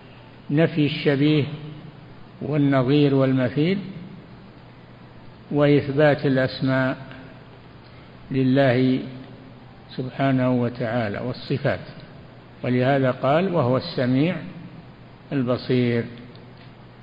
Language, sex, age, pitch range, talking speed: Arabic, male, 60-79, 130-150 Hz, 55 wpm